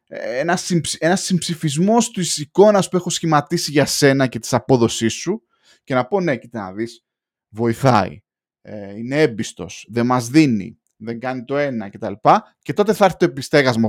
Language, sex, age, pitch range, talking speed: Greek, male, 20-39, 125-205 Hz, 175 wpm